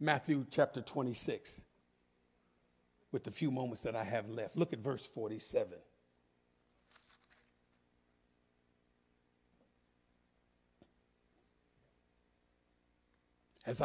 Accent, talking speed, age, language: American, 70 wpm, 50-69, English